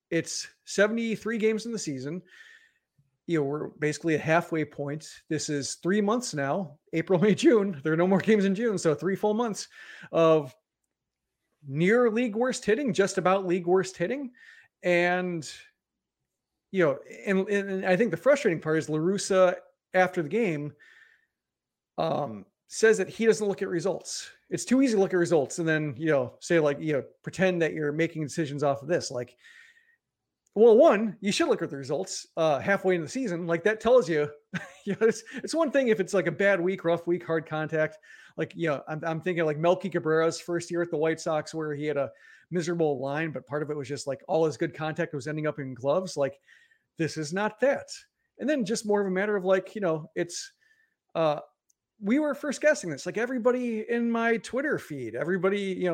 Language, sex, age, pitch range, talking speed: English, male, 30-49, 155-220 Hz, 205 wpm